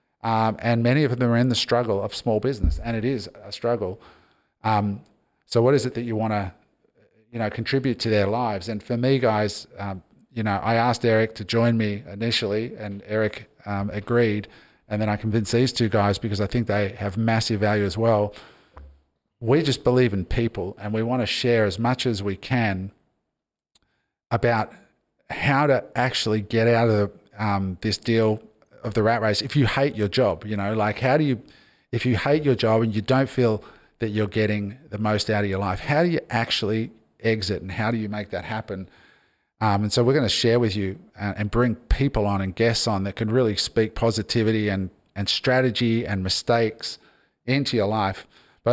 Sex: male